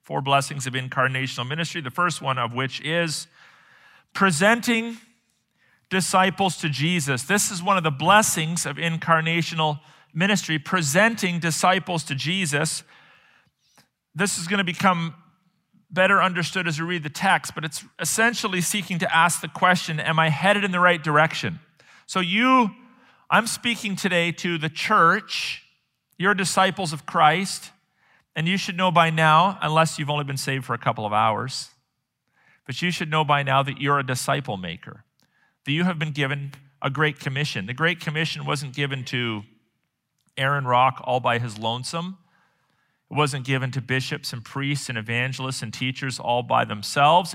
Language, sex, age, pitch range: English, male, 40-59, 135-185 Hz